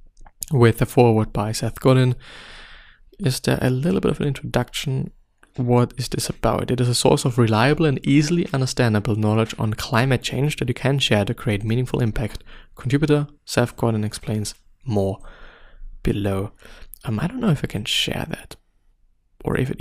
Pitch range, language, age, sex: 105-125 Hz, English, 20-39, male